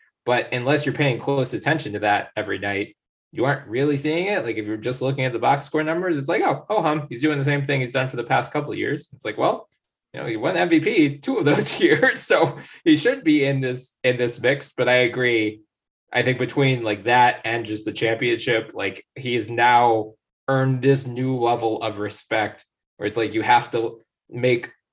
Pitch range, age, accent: 105-140 Hz, 20-39, American